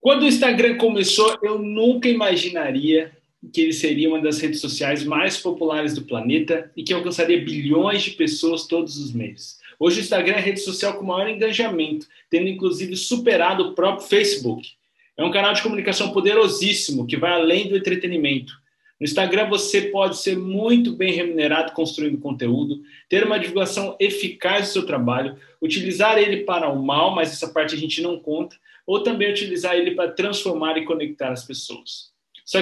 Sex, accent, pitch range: male, Brazilian, 160-205 Hz